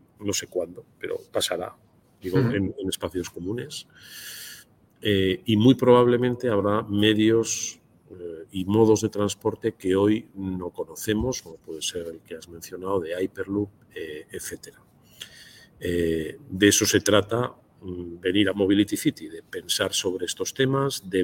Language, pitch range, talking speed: Spanish, 90-110 Hz, 145 wpm